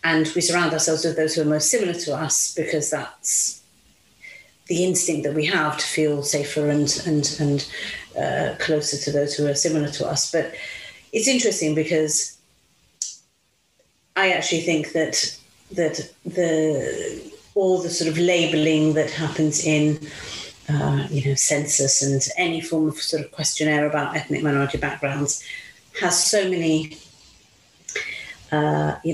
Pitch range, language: 150-175 Hz, English